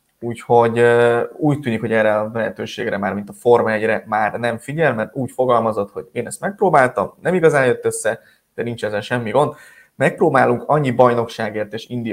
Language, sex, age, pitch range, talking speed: Hungarian, male, 20-39, 115-145 Hz, 180 wpm